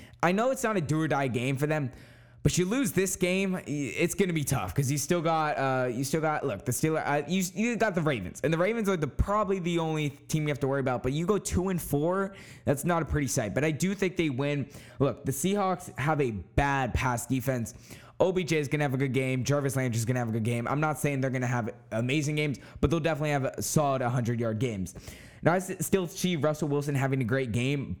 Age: 10-29